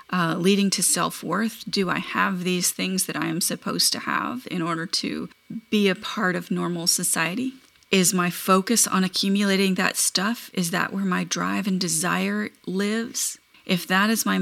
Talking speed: 180 wpm